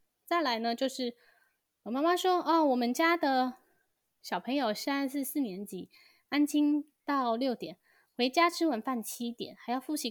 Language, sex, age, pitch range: Chinese, female, 20-39, 190-255 Hz